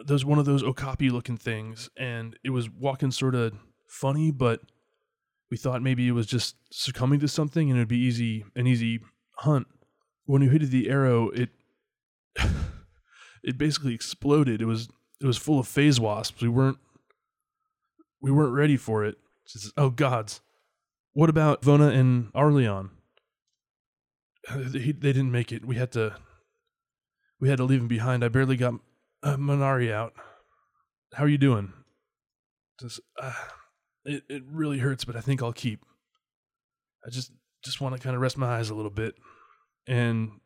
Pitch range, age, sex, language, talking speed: 110-140 Hz, 20-39, male, English, 165 wpm